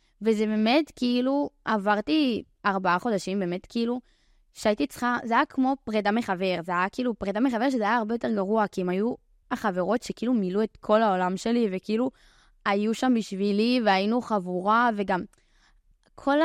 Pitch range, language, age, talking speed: 185-240 Hz, Hebrew, 20-39, 155 wpm